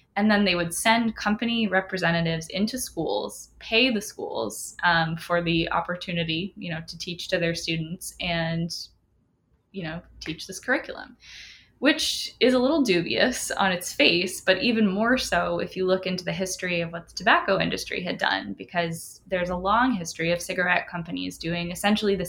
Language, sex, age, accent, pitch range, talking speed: English, female, 10-29, American, 165-190 Hz, 175 wpm